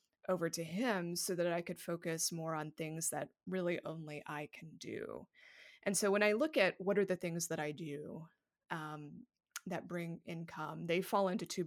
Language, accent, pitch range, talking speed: English, American, 160-195 Hz, 195 wpm